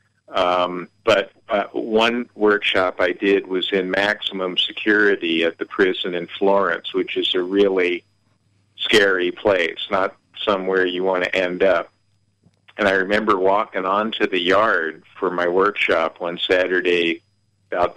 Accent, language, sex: American, English, male